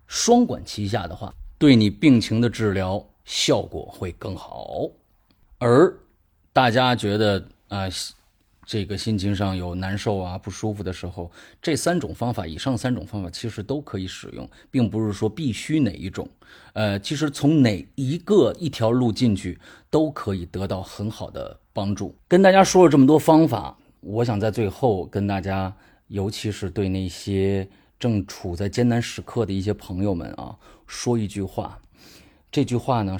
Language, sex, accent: Chinese, male, native